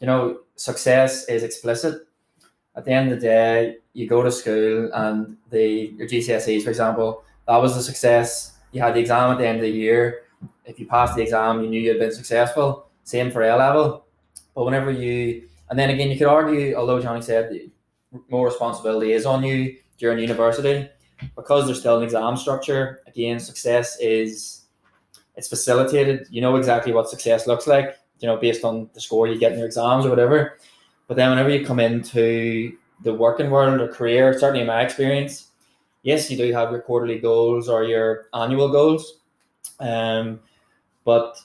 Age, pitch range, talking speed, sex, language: 20-39, 115-130 Hz, 185 wpm, male, English